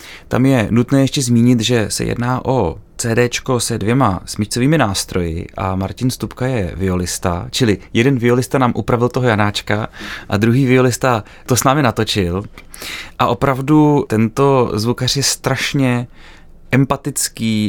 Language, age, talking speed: Czech, 30-49, 135 wpm